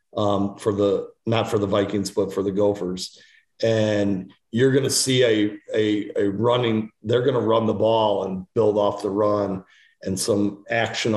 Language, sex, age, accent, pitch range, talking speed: English, male, 40-59, American, 105-115 Hz, 185 wpm